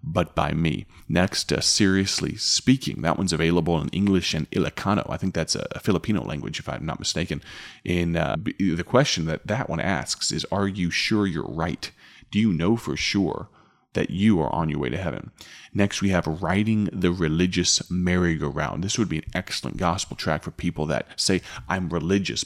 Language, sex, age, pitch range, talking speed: English, male, 30-49, 80-100 Hz, 190 wpm